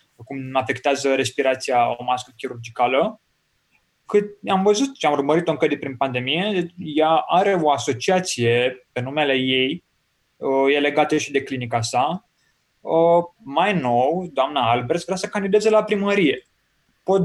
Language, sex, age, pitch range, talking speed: Romanian, male, 20-39, 125-190 Hz, 135 wpm